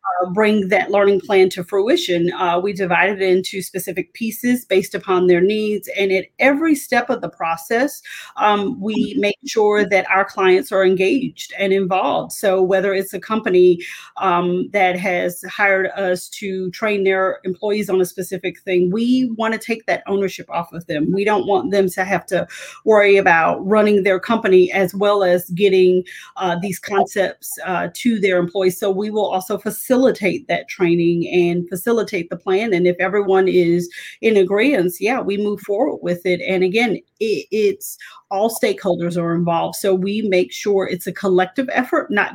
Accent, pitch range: American, 180-210 Hz